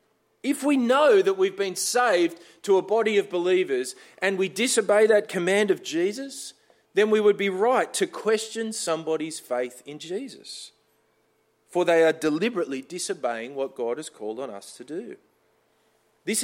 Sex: male